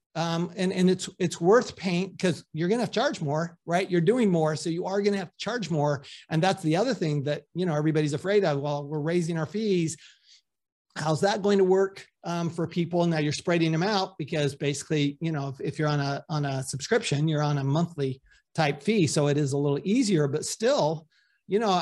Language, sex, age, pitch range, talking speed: English, male, 50-69, 155-190 Hz, 235 wpm